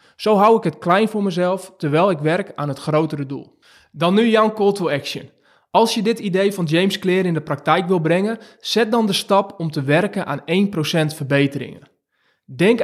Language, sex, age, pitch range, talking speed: Dutch, male, 20-39, 160-215 Hz, 200 wpm